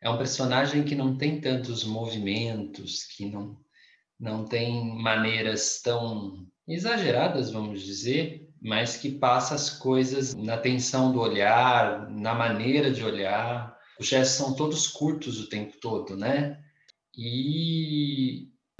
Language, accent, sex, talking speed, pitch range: Portuguese, Brazilian, male, 130 wpm, 110-145 Hz